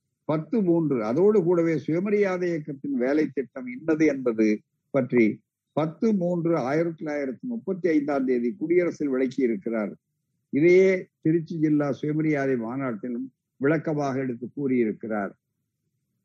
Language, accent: Tamil, native